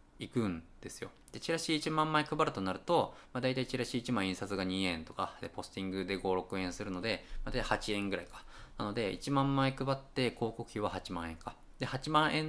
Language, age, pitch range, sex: Japanese, 20-39, 95-150 Hz, male